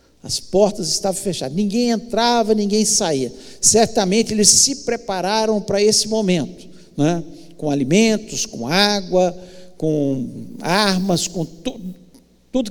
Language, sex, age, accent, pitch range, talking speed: Portuguese, male, 60-79, Brazilian, 190-230 Hz, 125 wpm